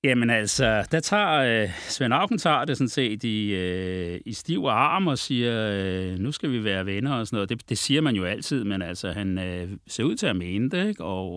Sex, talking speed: male, 220 wpm